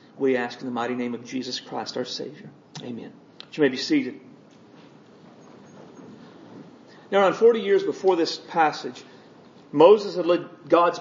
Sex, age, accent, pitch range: male, 40-59, American, 145-185 Hz